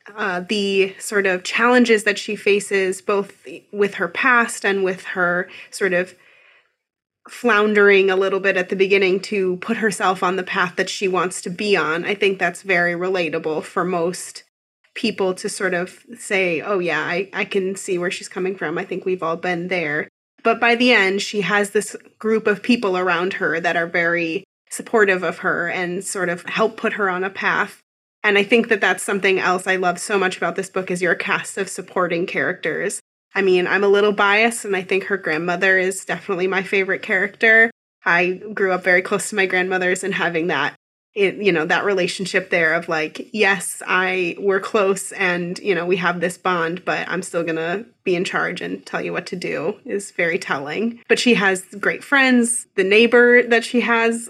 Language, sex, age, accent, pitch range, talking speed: English, female, 20-39, American, 180-210 Hz, 200 wpm